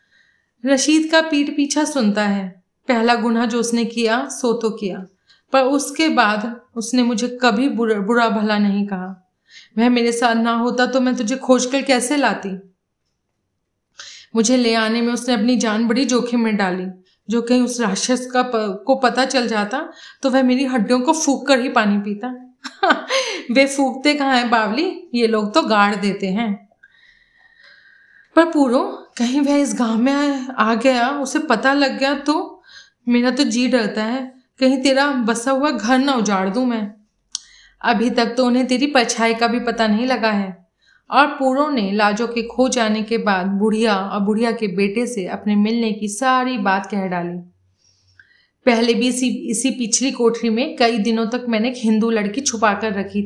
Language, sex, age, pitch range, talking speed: Hindi, female, 30-49, 220-265 Hz, 175 wpm